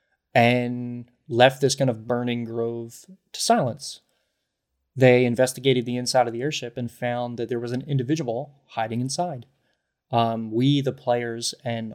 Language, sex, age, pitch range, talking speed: English, male, 20-39, 115-135 Hz, 150 wpm